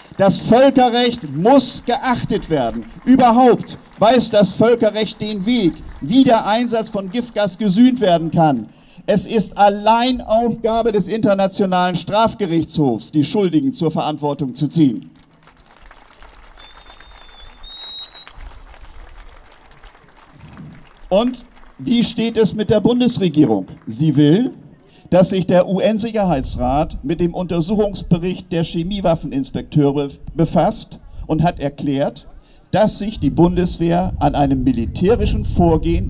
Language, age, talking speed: German, 50-69, 105 wpm